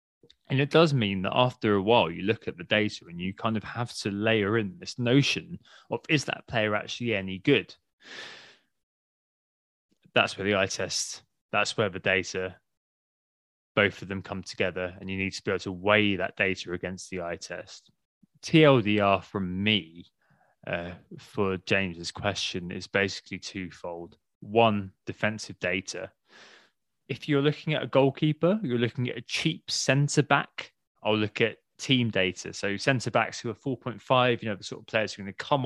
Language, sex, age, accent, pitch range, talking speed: English, male, 20-39, British, 100-125 Hz, 175 wpm